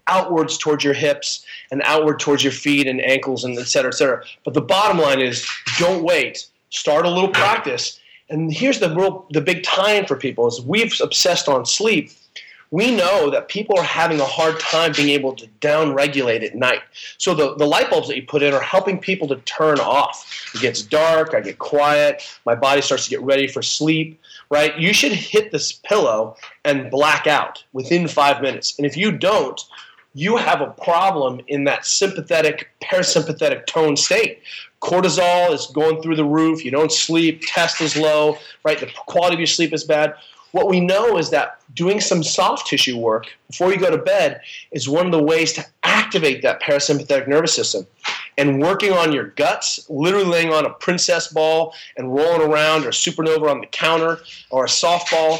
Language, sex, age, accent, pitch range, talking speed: English, male, 30-49, American, 145-175 Hz, 195 wpm